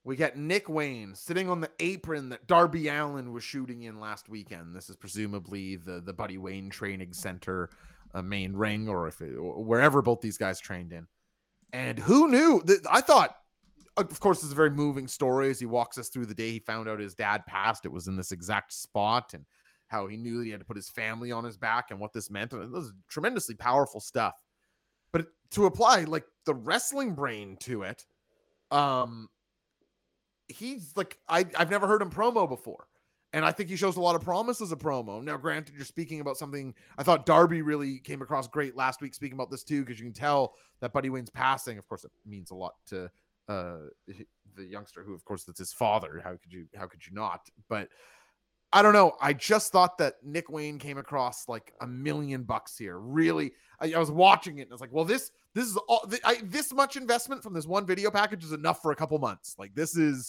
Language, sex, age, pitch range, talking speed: English, male, 30-49, 105-170 Hz, 220 wpm